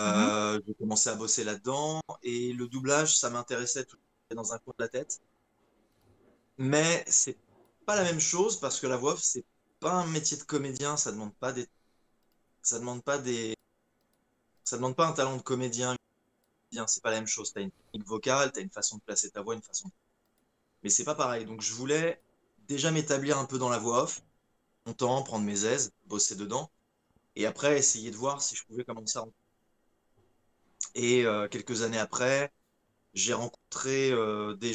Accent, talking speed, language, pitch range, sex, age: French, 185 wpm, French, 105-130 Hz, male, 20-39